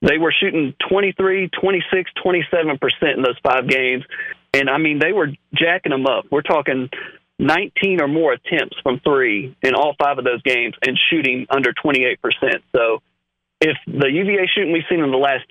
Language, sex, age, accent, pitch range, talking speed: English, male, 40-59, American, 140-190 Hz, 175 wpm